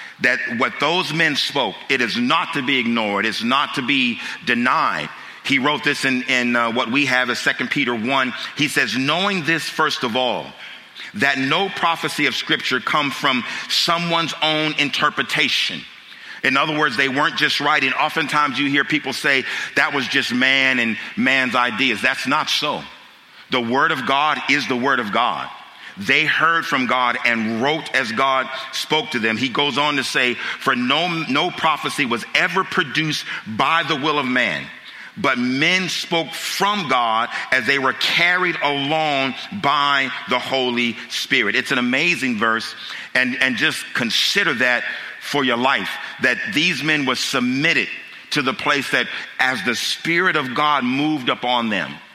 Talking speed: 170 wpm